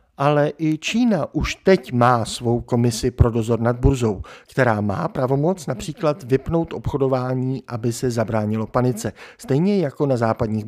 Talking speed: 145 wpm